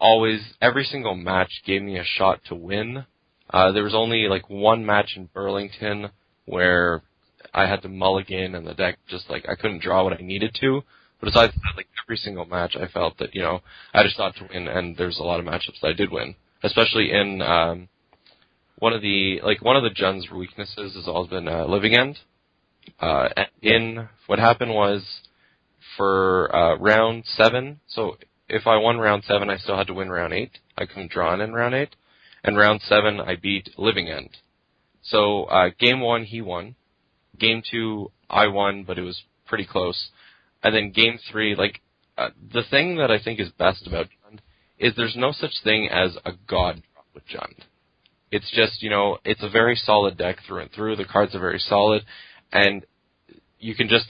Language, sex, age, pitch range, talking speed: English, male, 20-39, 95-110 Hz, 200 wpm